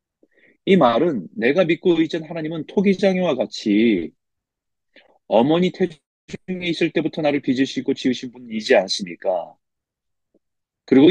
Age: 40-59